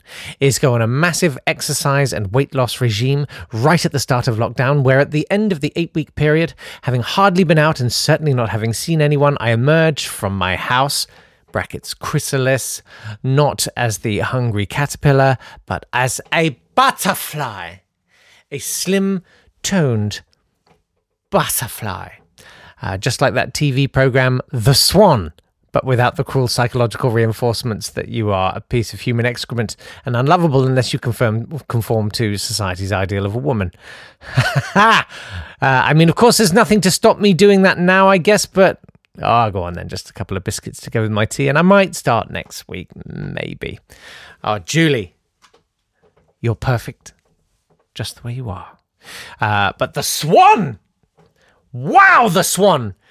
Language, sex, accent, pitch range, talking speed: English, male, British, 115-155 Hz, 160 wpm